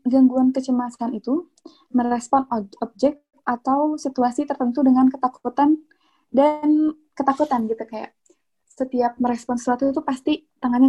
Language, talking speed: Indonesian, 110 wpm